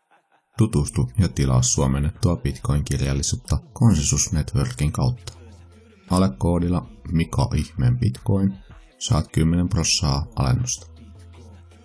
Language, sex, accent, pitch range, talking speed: Finnish, male, native, 75-110 Hz, 85 wpm